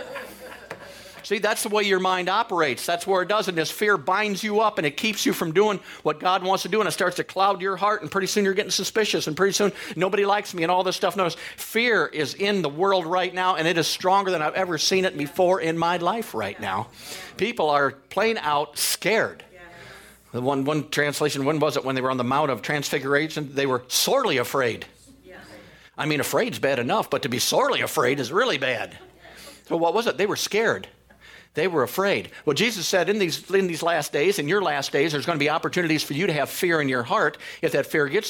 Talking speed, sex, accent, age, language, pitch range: 235 wpm, male, American, 50-69, English, 145-195 Hz